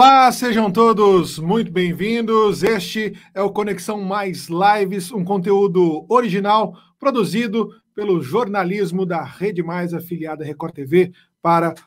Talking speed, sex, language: 120 wpm, male, Portuguese